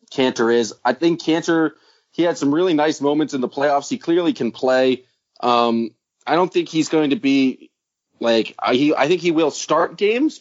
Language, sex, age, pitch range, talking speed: English, male, 30-49, 120-150 Hz, 200 wpm